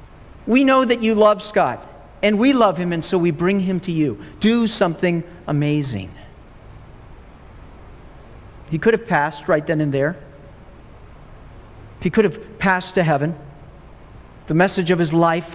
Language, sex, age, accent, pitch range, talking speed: English, male, 50-69, American, 160-215 Hz, 150 wpm